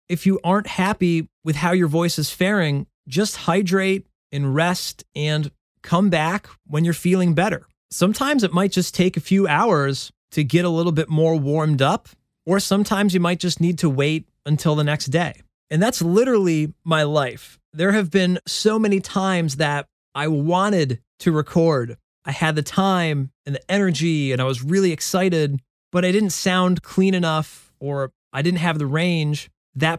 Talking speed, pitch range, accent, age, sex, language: 180 wpm, 150-190 Hz, American, 30-49, male, English